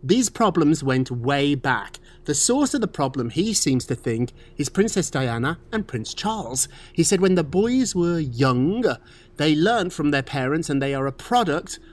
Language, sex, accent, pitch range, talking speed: English, male, British, 130-195 Hz, 185 wpm